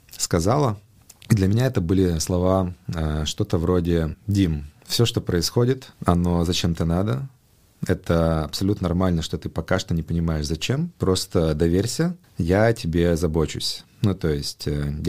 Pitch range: 80-105 Hz